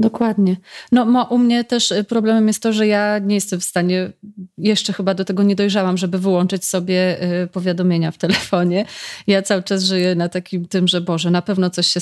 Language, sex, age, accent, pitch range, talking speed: Polish, female, 30-49, native, 170-200 Hz, 205 wpm